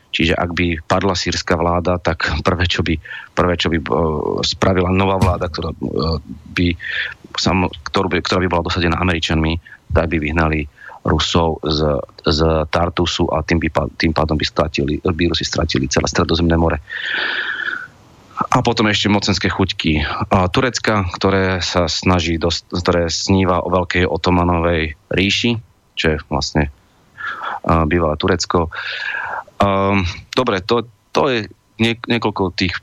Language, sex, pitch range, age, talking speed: Slovak, male, 85-100 Hz, 30-49, 135 wpm